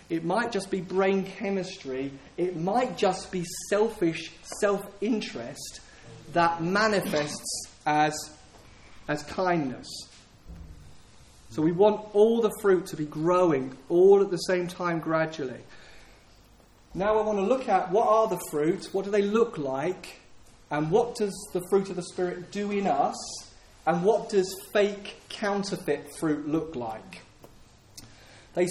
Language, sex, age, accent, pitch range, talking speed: English, male, 30-49, British, 155-195 Hz, 140 wpm